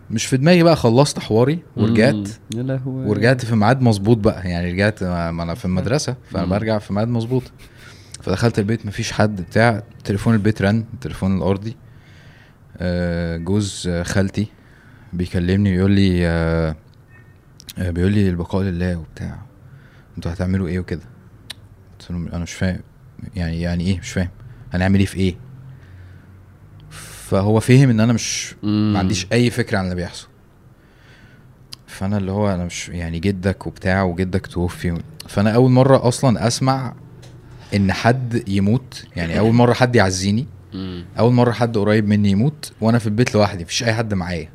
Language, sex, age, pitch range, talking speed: Arabic, male, 20-39, 95-120 Hz, 145 wpm